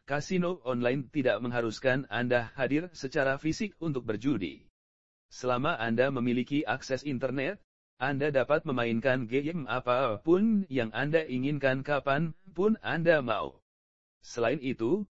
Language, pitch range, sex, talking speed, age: English, 120-155 Hz, male, 115 wpm, 40-59